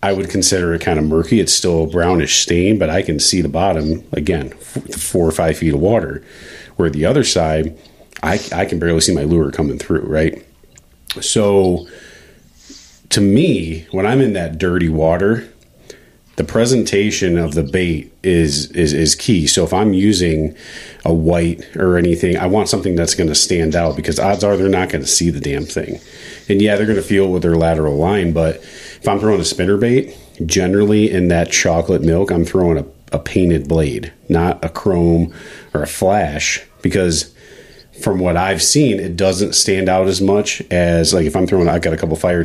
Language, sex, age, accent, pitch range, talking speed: English, male, 40-59, American, 80-95 Hz, 195 wpm